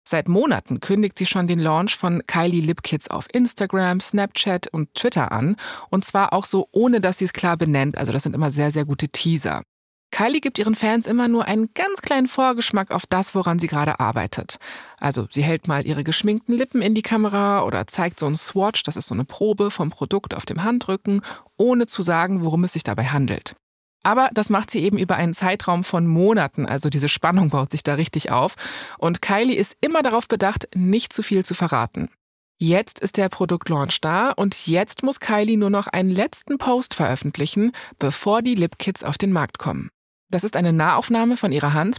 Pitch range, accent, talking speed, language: 150-210 Hz, German, 205 wpm, German